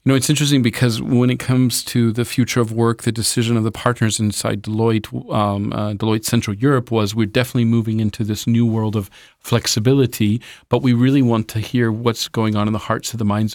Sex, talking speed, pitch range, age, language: male, 215 wpm, 115-135 Hz, 40-59, Polish